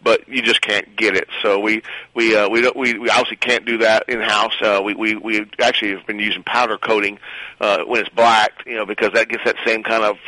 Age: 40-59